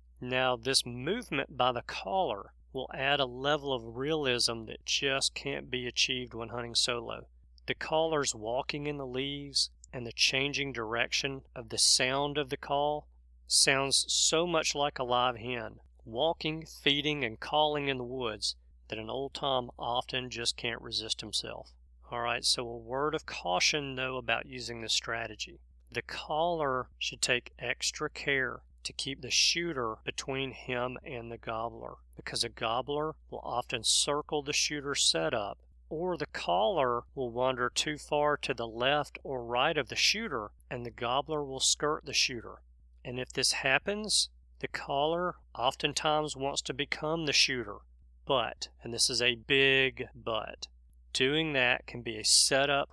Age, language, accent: 40-59, English, American